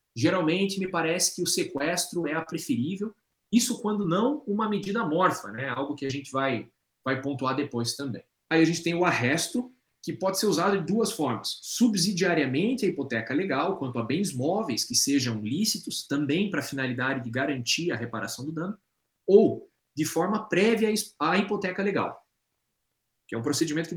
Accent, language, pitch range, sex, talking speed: Brazilian, Portuguese, 135-185 Hz, male, 180 wpm